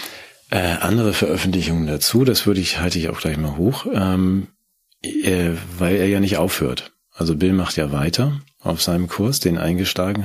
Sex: male